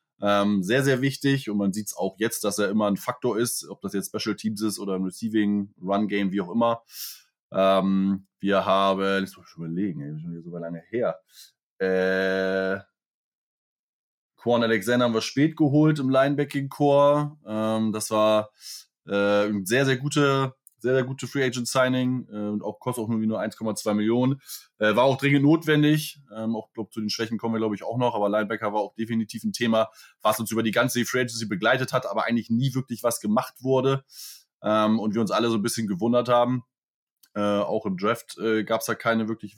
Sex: male